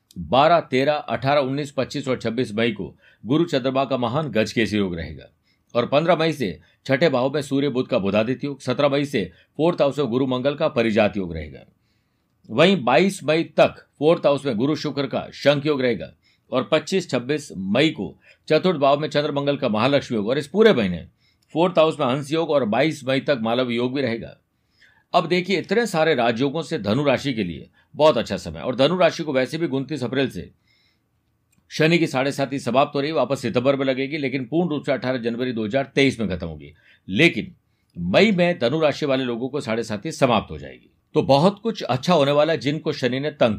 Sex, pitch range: male, 120-155 Hz